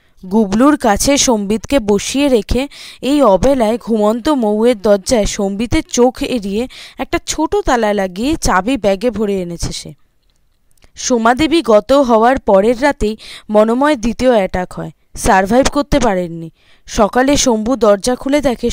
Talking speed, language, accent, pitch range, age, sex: 125 wpm, Bengali, native, 205-265 Hz, 20-39, female